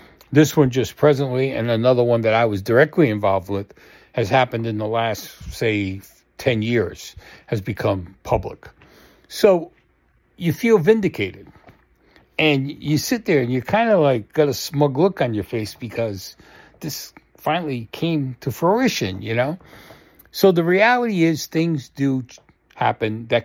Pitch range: 115-170 Hz